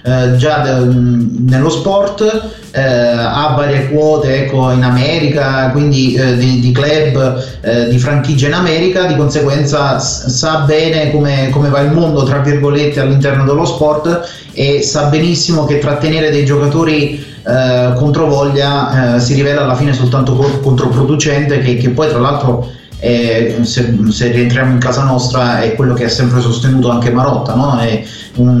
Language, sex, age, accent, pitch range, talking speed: Italian, male, 30-49, native, 125-150 Hz, 155 wpm